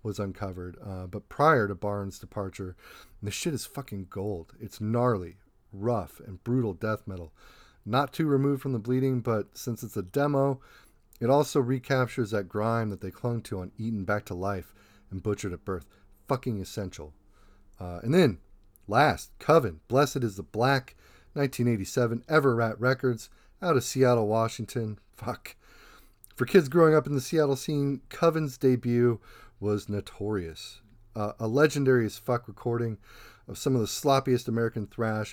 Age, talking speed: 40-59, 155 wpm